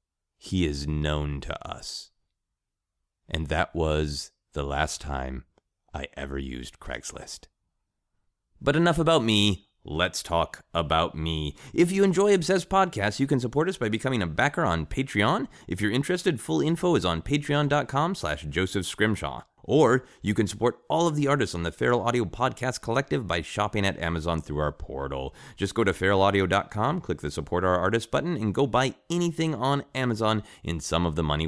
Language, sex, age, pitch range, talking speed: English, male, 30-49, 80-120 Hz, 170 wpm